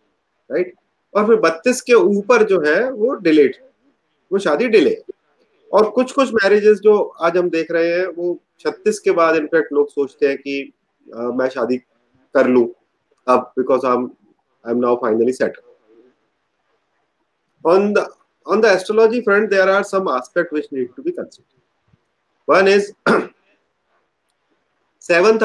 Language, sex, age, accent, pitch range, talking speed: Hindi, male, 30-49, native, 155-220 Hz, 125 wpm